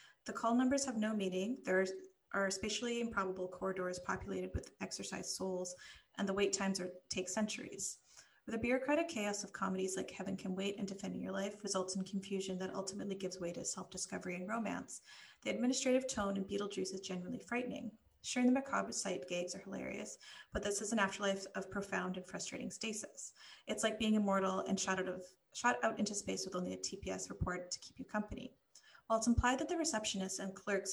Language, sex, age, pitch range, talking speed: English, female, 30-49, 185-215 Hz, 195 wpm